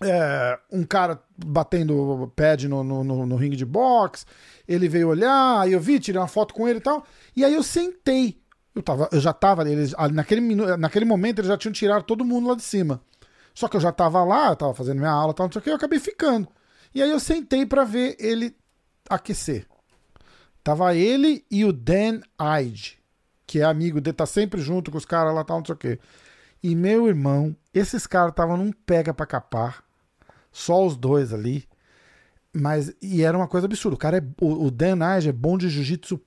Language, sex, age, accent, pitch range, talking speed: Portuguese, male, 40-59, Brazilian, 155-205 Hz, 210 wpm